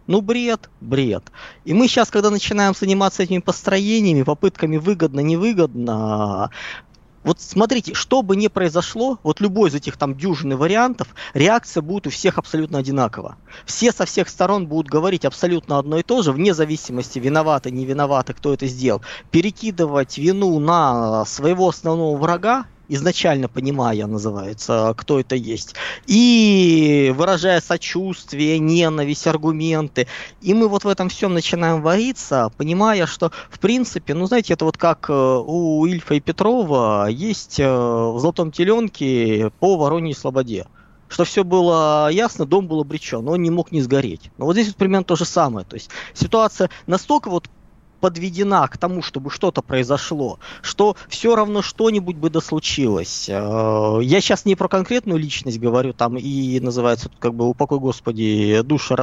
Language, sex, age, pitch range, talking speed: Russian, male, 20-39, 135-190 Hz, 150 wpm